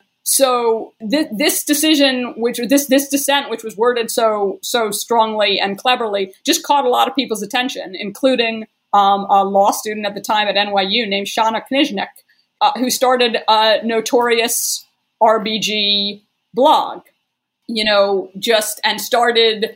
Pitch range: 210-260 Hz